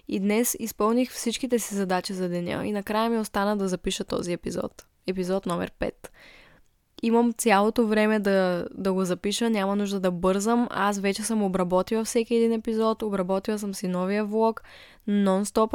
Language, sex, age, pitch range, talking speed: Bulgarian, female, 10-29, 190-220 Hz, 165 wpm